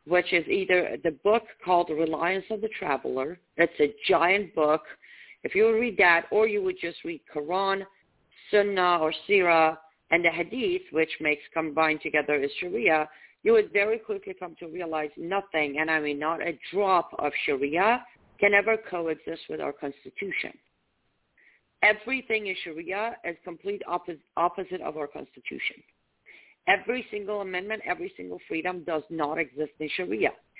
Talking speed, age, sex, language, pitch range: 155 wpm, 50-69, female, English, 160-220 Hz